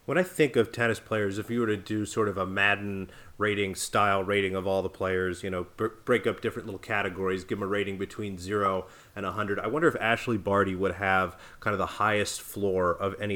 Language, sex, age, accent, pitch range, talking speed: English, male, 30-49, American, 95-105 Hz, 230 wpm